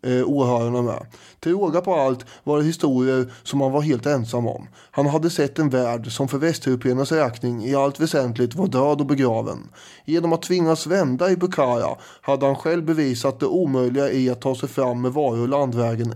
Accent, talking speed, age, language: Swedish, 180 wpm, 20-39, English